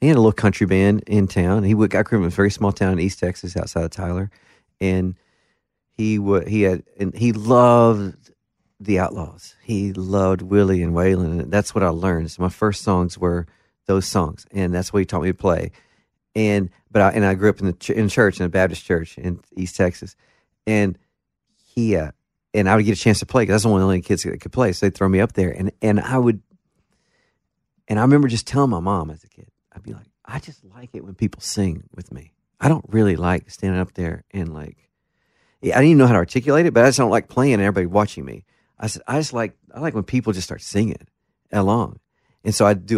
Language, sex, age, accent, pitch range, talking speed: English, male, 50-69, American, 90-110 Hz, 245 wpm